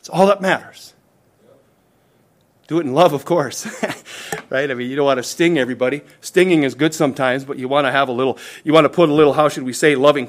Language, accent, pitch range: English, American, 115-160 Hz